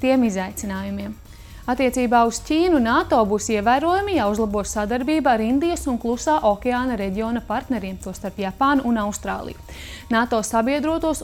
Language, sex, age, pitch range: English, female, 30-49, 215-285 Hz